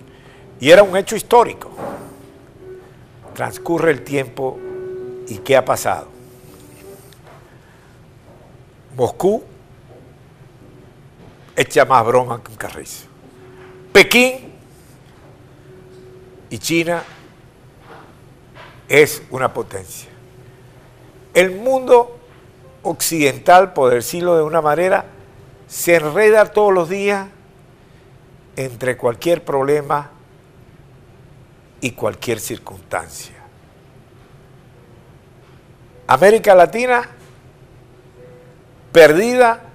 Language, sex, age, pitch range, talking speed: Spanish, male, 60-79, 125-160 Hz, 70 wpm